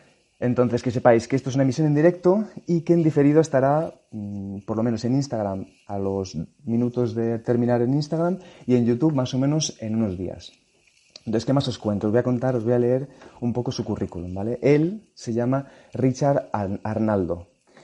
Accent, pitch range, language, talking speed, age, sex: Spanish, 105-135 Hz, Spanish, 200 wpm, 30-49, male